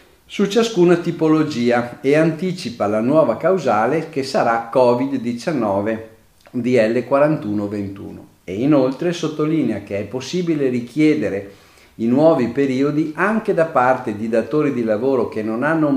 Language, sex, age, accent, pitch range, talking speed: Italian, male, 50-69, native, 110-155 Hz, 125 wpm